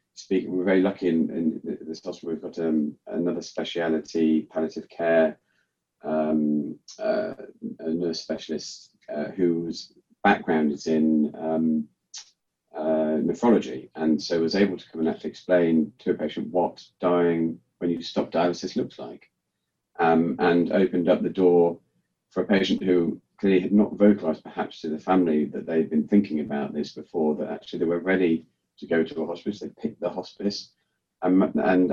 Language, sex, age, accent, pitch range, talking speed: English, male, 40-59, British, 80-90 Hz, 175 wpm